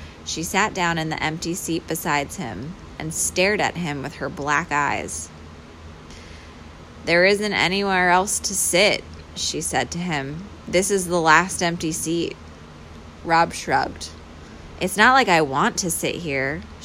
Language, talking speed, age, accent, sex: English, 155 wpm, 20-39, American, female